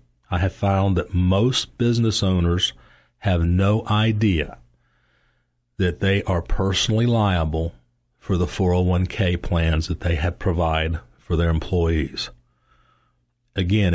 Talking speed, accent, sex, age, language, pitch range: 115 wpm, American, male, 40-59, English, 85-105 Hz